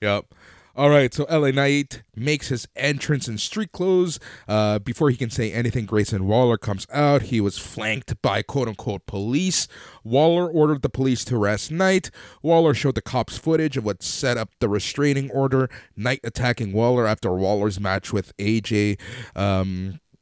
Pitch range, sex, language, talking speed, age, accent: 105-130 Hz, male, English, 165 wpm, 30-49, American